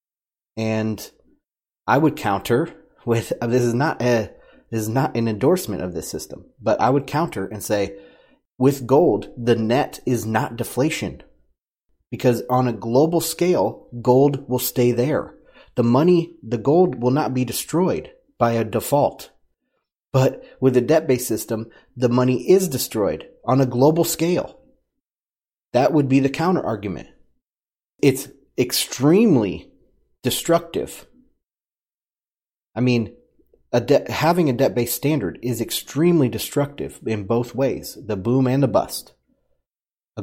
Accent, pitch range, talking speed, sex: American, 115-145 Hz, 135 wpm, male